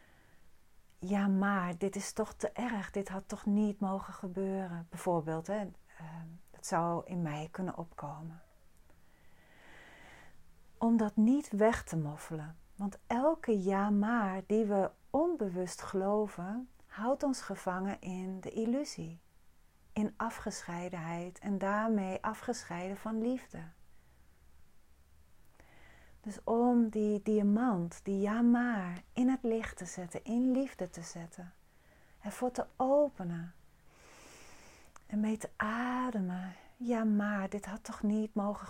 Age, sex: 40-59, female